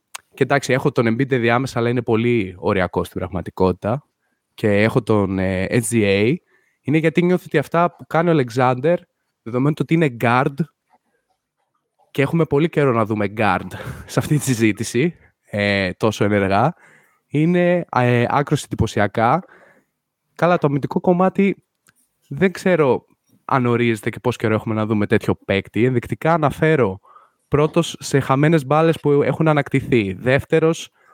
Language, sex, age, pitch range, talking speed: Greek, male, 20-39, 115-160 Hz, 145 wpm